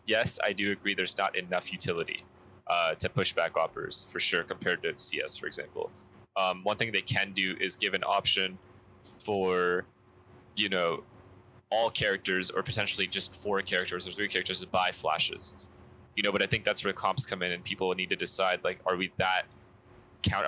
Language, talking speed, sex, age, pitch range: English, 195 wpm, male, 20-39, 95-120 Hz